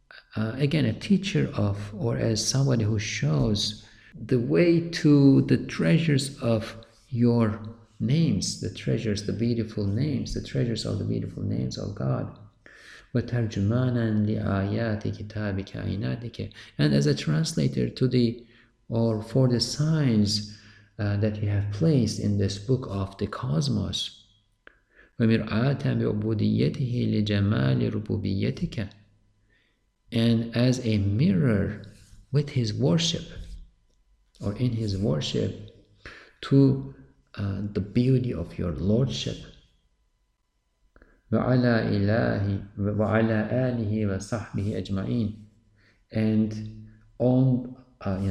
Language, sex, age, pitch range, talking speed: English, male, 50-69, 105-125 Hz, 95 wpm